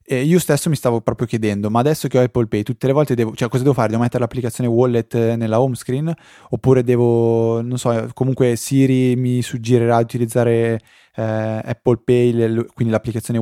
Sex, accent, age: male, native, 20-39